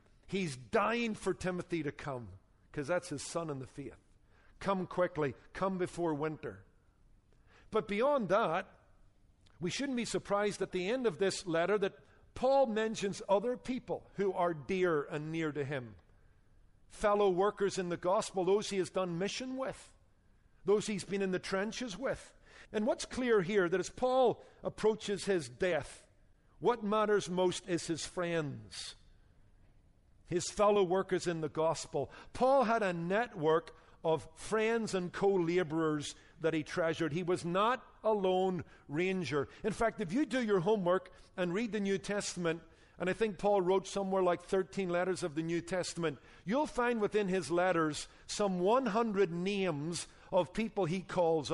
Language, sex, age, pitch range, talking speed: English, male, 50-69, 155-200 Hz, 160 wpm